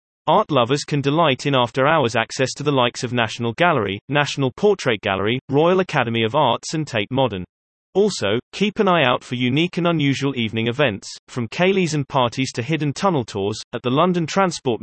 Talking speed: 190 wpm